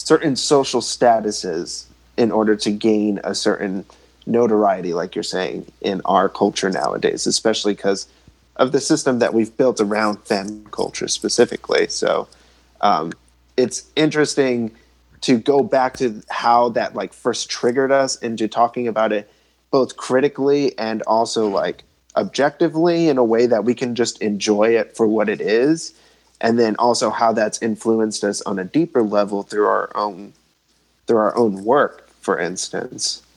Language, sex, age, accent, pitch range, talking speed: English, male, 30-49, American, 105-125 Hz, 155 wpm